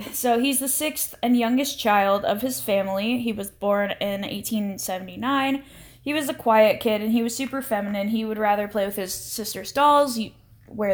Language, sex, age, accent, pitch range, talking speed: English, female, 10-29, American, 210-250 Hz, 185 wpm